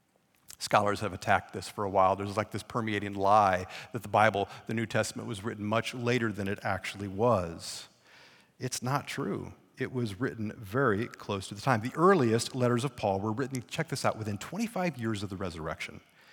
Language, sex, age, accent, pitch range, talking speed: English, male, 40-59, American, 100-125 Hz, 195 wpm